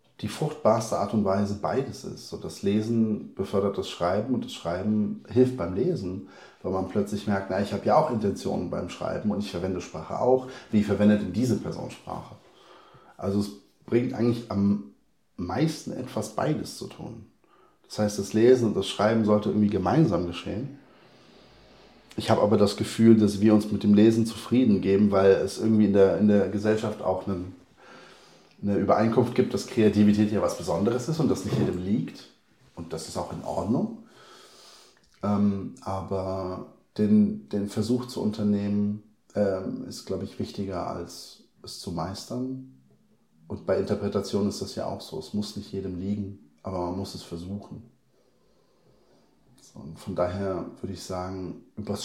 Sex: male